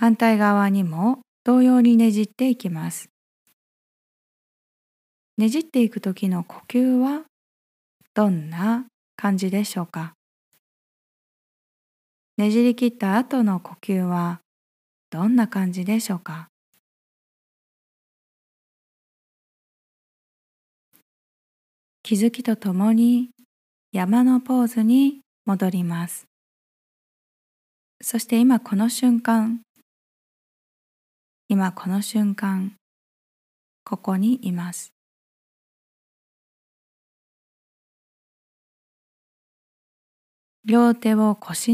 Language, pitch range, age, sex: Japanese, 195-240 Hz, 20-39, female